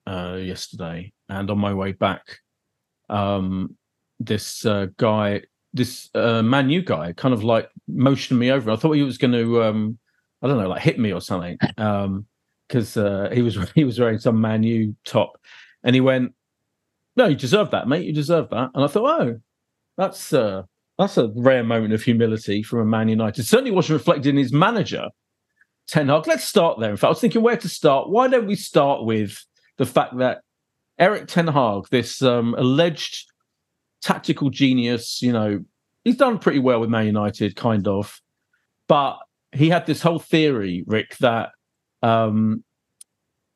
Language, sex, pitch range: English, male, 110-155 Hz